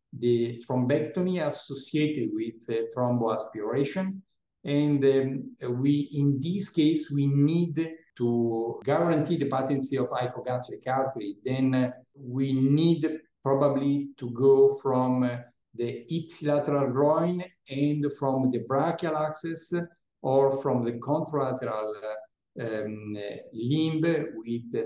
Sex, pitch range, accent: male, 120-150 Hz, Italian